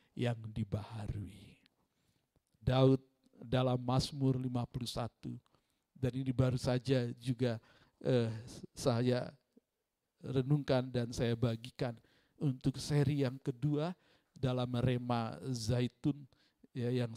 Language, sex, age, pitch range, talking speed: Indonesian, male, 50-69, 120-160 Hz, 90 wpm